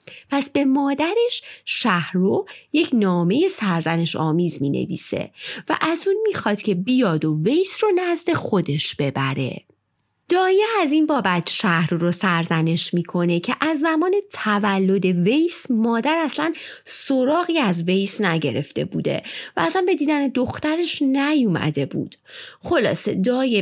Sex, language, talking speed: female, Persian, 130 wpm